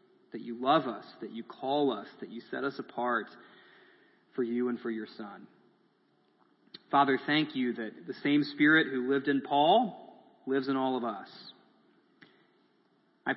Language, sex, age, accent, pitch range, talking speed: English, male, 30-49, American, 115-140 Hz, 160 wpm